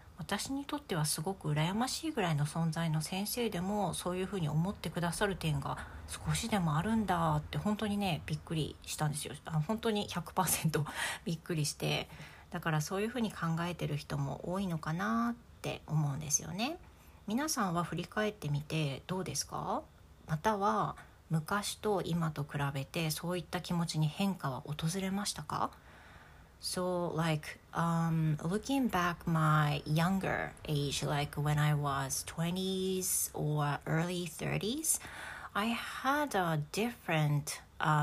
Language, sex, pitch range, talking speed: English, female, 150-190 Hz, 40 wpm